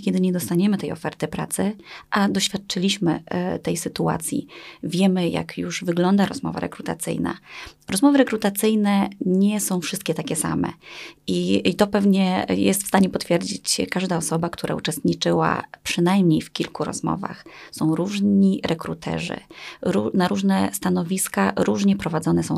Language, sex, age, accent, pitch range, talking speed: Polish, female, 20-39, native, 155-200 Hz, 130 wpm